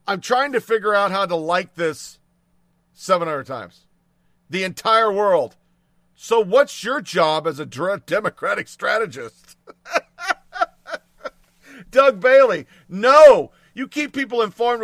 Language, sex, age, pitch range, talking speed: English, male, 50-69, 165-225 Hz, 115 wpm